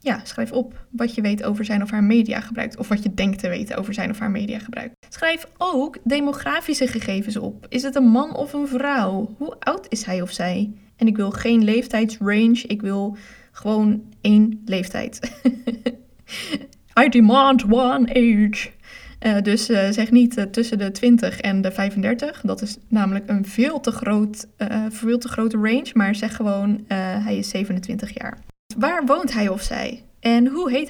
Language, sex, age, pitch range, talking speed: Dutch, female, 20-39, 210-245 Hz, 180 wpm